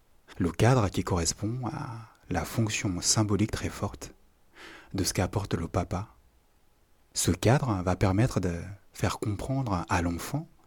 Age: 30-49